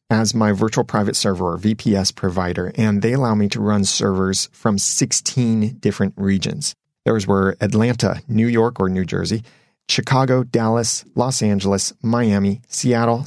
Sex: male